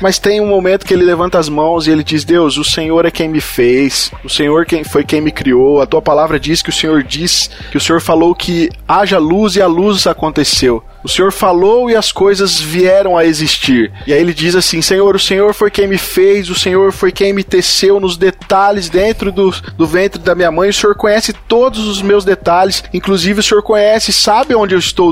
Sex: male